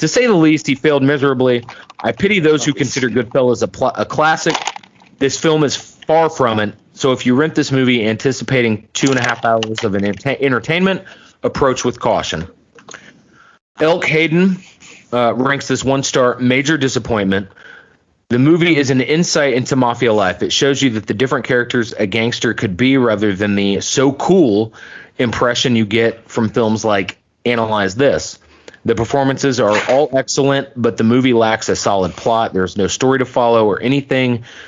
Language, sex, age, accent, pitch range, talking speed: English, male, 30-49, American, 115-145 Hz, 175 wpm